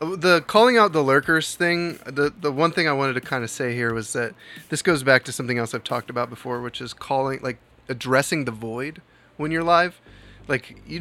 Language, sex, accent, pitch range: English, male, American, 125-160 Hz